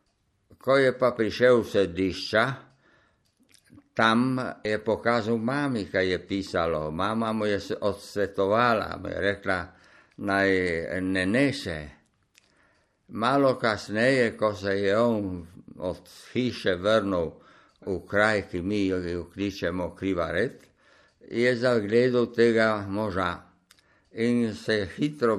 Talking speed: 100 wpm